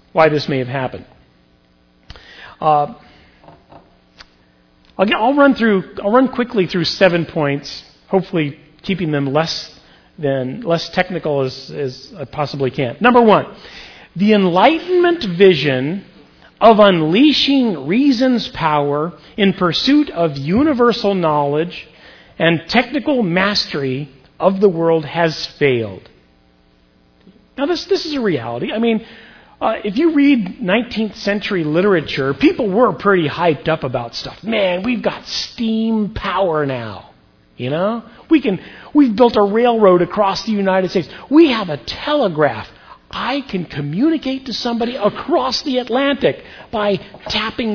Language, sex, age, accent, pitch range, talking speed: English, male, 40-59, American, 150-230 Hz, 135 wpm